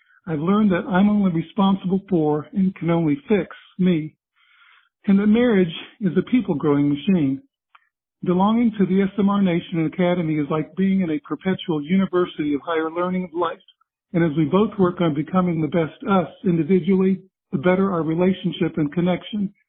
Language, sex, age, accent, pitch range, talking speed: English, male, 50-69, American, 160-195 Hz, 165 wpm